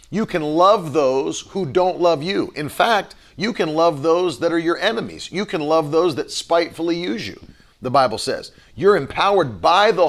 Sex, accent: male, American